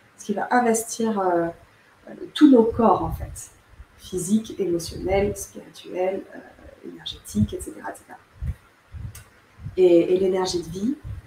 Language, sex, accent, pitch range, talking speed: French, female, French, 175-225 Hz, 115 wpm